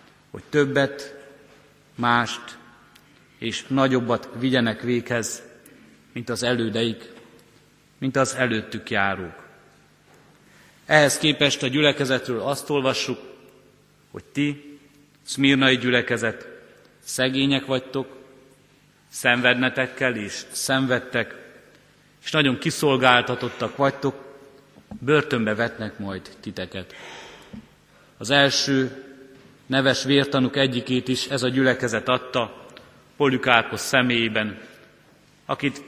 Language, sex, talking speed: Hungarian, male, 85 wpm